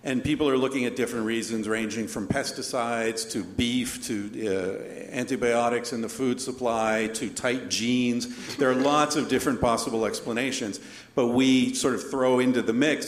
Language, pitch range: English, 115-145 Hz